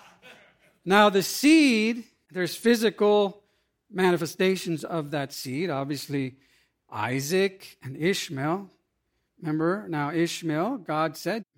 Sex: male